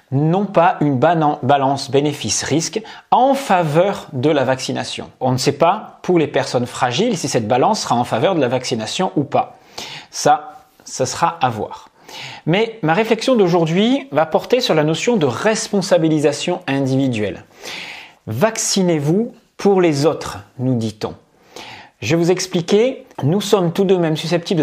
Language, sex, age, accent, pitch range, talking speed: English, male, 40-59, French, 135-200 Hz, 150 wpm